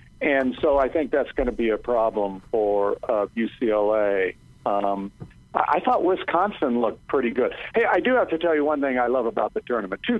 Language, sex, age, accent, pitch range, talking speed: English, male, 50-69, American, 120-185 Hz, 205 wpm